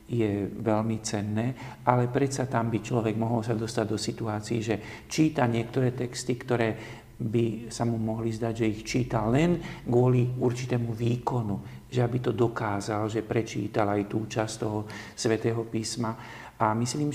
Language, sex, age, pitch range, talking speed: Slovak, male, 50-69, 105-120 Hz, 155 wpm